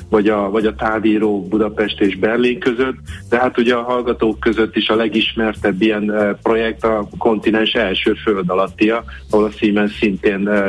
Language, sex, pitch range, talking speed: Hungarian, male, 105-115 Hz, 155 wpm